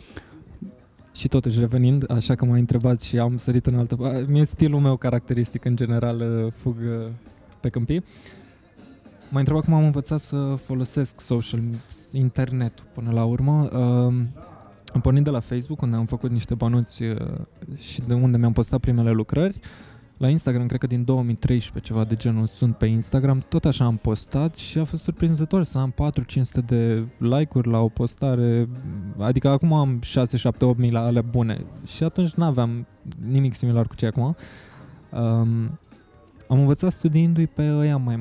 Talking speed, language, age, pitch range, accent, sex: 160 wpm, Romanian, 20-39, 120-135 Hz, native, male